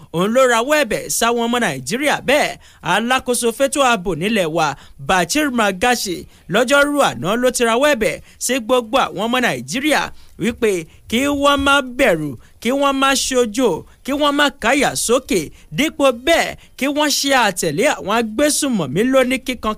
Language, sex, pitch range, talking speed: English, male, 185-265 Hz, 140 wpm